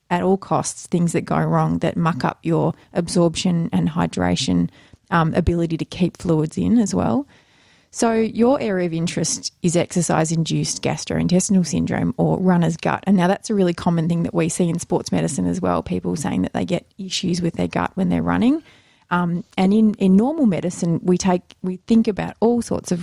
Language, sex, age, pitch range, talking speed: English, female, 20-39, 165-205 Hz, 195 wpm